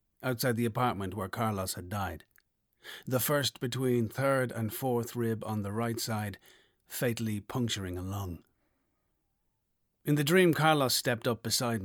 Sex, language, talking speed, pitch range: male, English, 145 wpm, 110-130 Hz